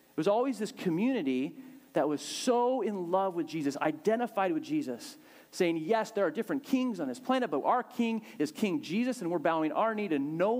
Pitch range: 175-265 Hz